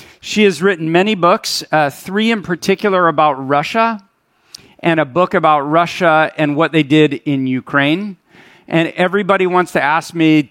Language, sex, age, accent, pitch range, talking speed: English, male, 40-59, American, 150-185 Hz, 160 wpm